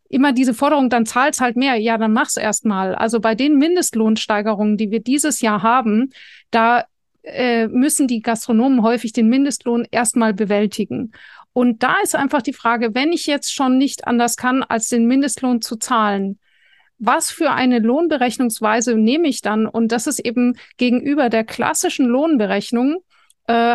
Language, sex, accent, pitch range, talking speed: German, female, German, 220-265 Hz, 160 wpm